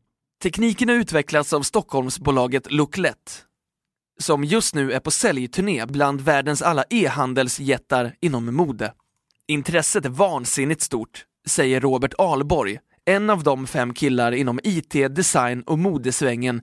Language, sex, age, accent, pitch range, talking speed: Swedish, male, 20-39, native, 130-175 Hz, 125 wpm